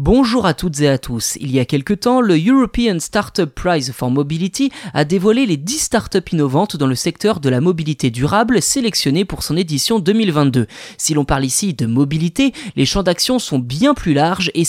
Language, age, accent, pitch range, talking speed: French, 20-39, French, 140-205 Hz, 200 wpm